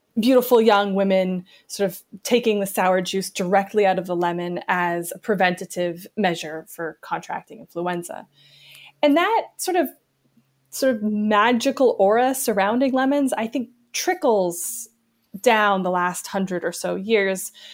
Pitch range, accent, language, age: 180-230 Hz, American, English, 20-39